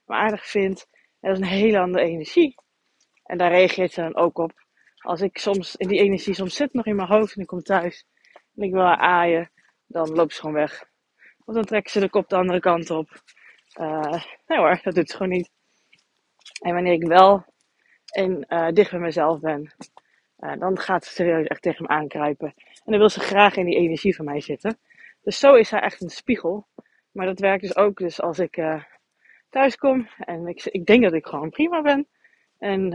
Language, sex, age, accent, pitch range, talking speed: Dutch, female, 20-39, Dutch, 170-215 Hz, 215 wpm